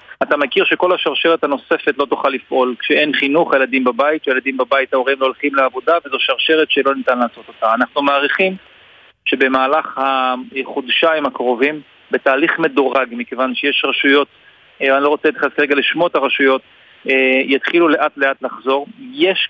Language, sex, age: Hebrew, male, 40-59